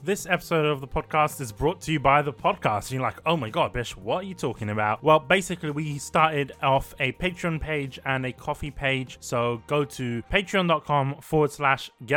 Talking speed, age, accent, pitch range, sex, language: 205 wpm, 20-39, British, 125-155 Hz, male, English